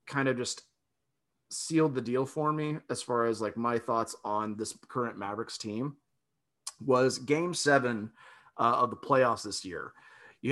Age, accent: 30-49, American